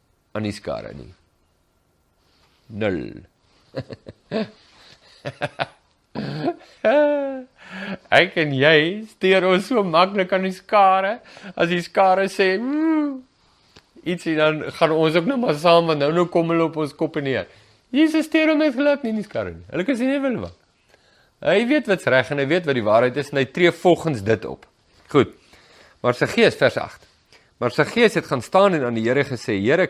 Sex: male